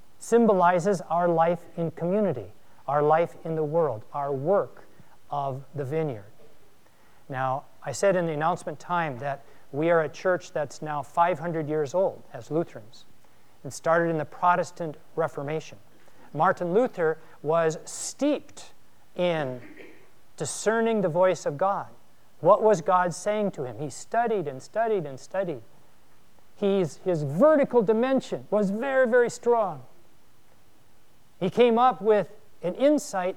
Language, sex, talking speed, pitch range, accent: English, male, 135 wpm, 155-215 Hz, American